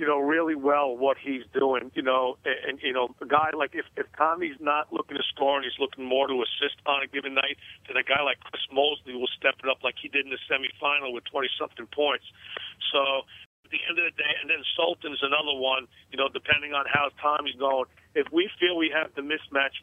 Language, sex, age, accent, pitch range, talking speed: English, male, 50-69, American, 130-150 Hz, 240 wpm